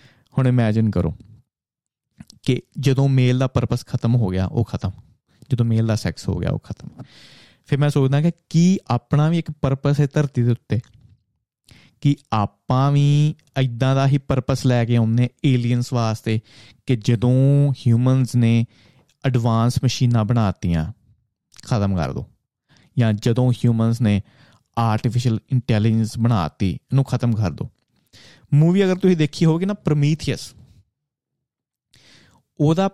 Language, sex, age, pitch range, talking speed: Punjabi, male, 30-49, 115-145 Hz, 130 wpm